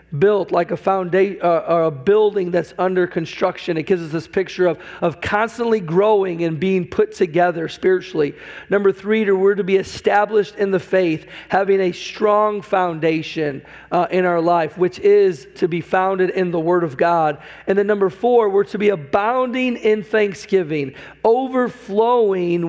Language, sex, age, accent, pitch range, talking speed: English, male, 40-59, American, 170-200 Hz, 170 wpm